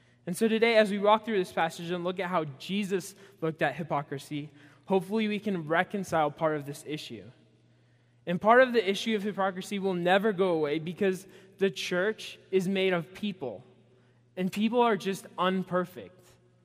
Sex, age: male, 20-39